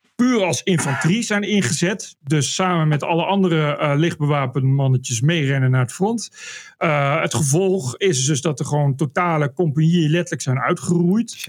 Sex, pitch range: male, 140-185 Hz